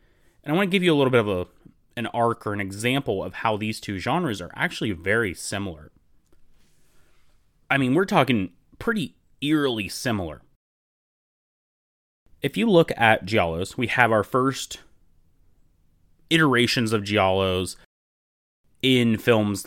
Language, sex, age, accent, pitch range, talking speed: English, male, 30-49, American, 95-130 Hz, 140 wpm